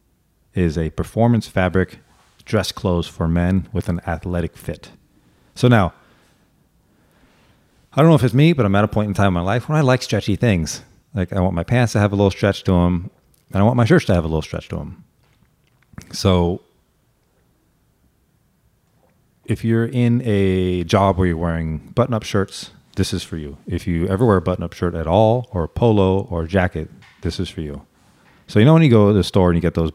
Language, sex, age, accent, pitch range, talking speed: English, male, 30-49, American, 85-105 Hz, 210 wpm